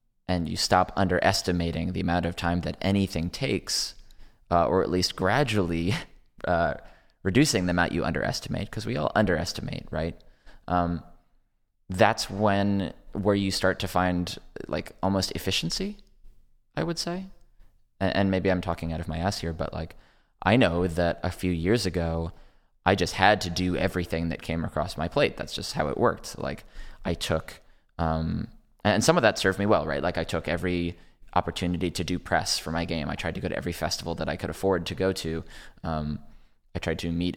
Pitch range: 85-95 Hz